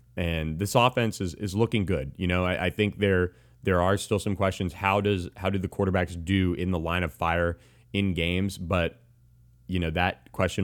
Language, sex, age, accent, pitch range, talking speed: English, male, 30-49, American, 85-105 Hz, 210 wpm